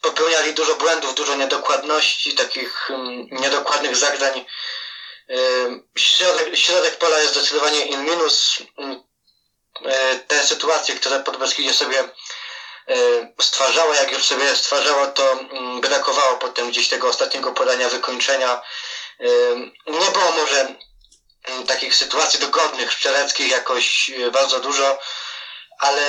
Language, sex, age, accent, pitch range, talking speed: Polish, male, 20-39, native, 130-145 Hz, 120 wpm